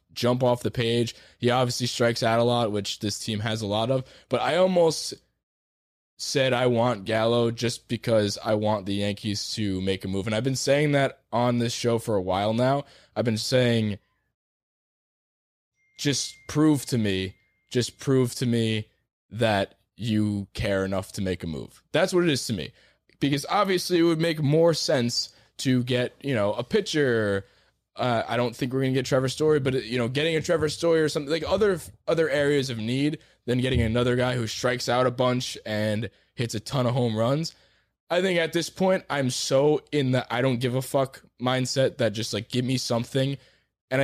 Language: English